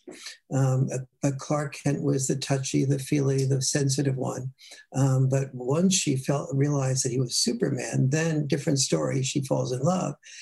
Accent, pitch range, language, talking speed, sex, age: American, 130-140 Hz, English, 165 wpm, male, 60-79